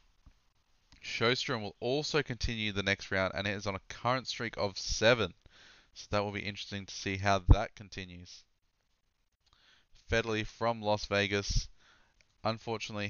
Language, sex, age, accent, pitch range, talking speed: English, male, 20-39, Australian, 95-110 Hz, 140 wpm